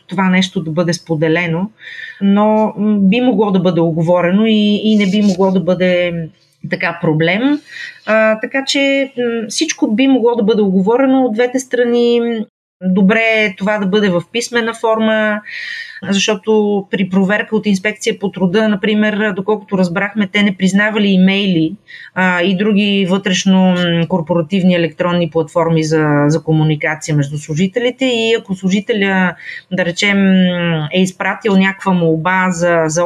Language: Bulgarian